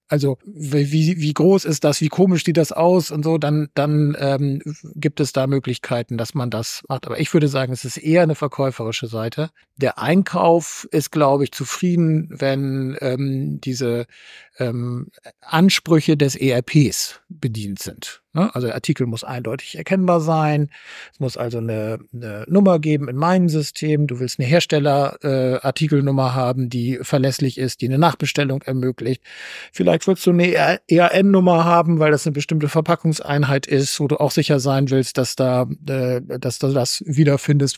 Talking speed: 165 wpm